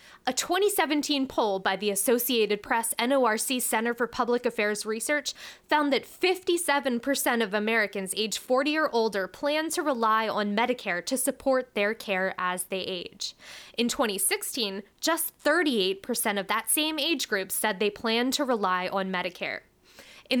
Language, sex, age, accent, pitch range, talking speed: English, female, 10-29, American, 215-280 Hz, 150 wpm